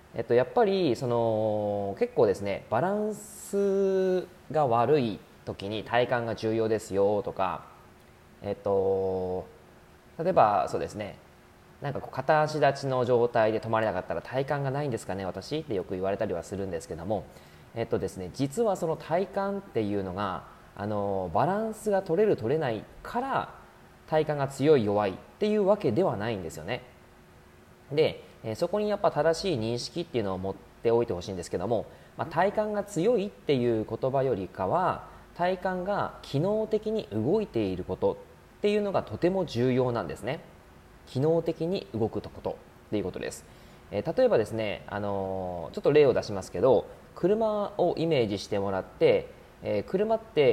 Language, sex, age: Japanese, male, 20-39